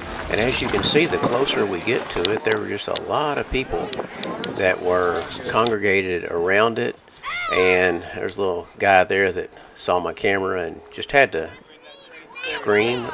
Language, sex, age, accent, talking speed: English, male, 50-69, American, 175 wpm